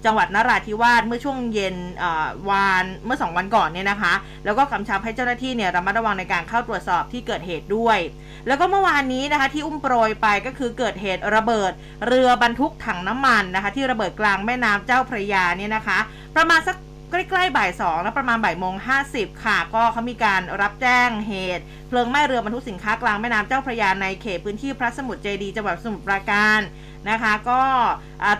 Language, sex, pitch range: Thai, female, 195-250 Hz